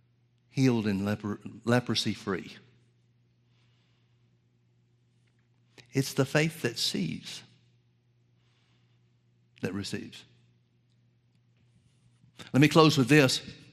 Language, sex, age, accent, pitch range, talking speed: English, male, 60-79, American, 110-140 Hz, 65 wpm